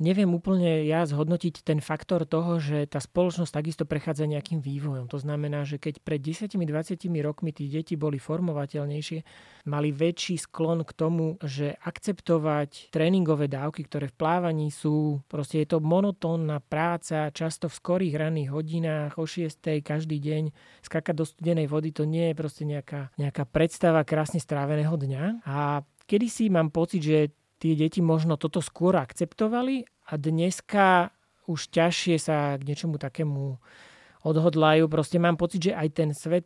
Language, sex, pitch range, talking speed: Slovak, male, 150-170 Hz, 155 wpm